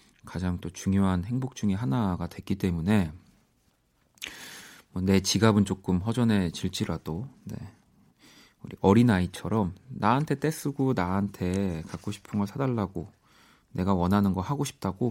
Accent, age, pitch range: native, 40-59, 90-125 Hz